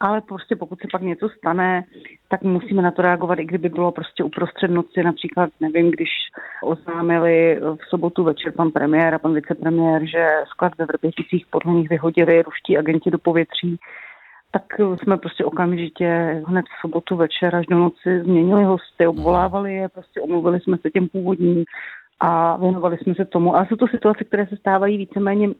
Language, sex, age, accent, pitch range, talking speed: Czech, female, 30-49, native, 170-195 Hz, 175 wpm